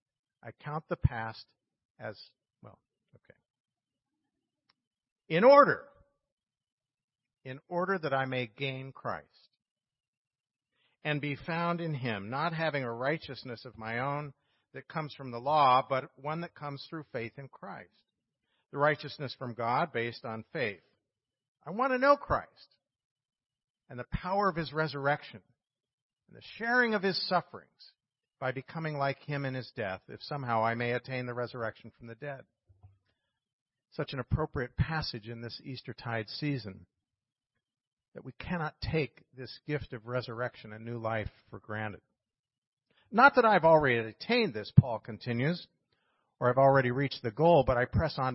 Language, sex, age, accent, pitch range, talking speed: English, male, 50-69, American, 115-150 Hz, 150 wpm